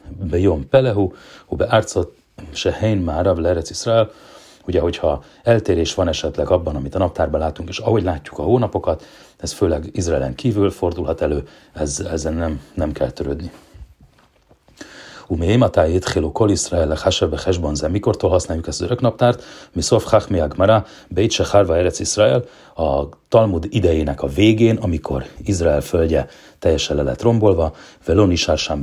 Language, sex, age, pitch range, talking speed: Hungarian, male, 40-59, 80-105 Hz, 120 wpm